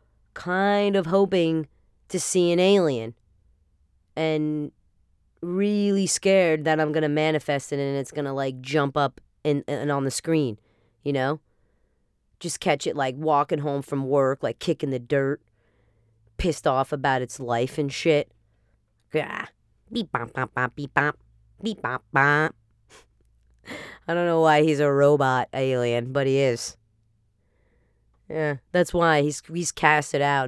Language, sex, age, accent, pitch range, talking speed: English, female, 30-49, American, 125-155 Hz, 135 wpm